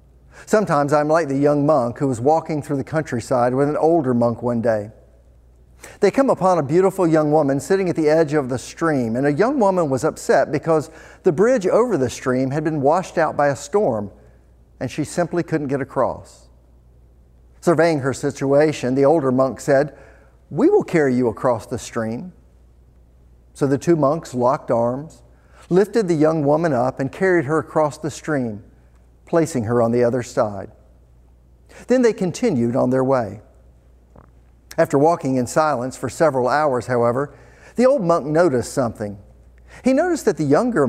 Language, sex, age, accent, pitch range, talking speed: English, male, 50-69, American, 95-155 Hz, 175 wpm